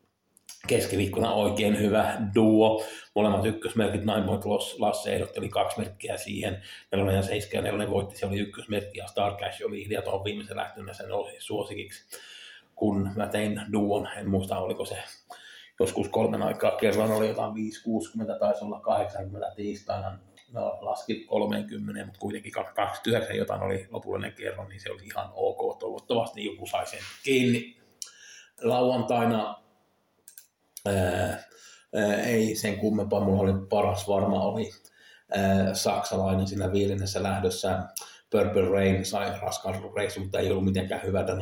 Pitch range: 100-115 Hz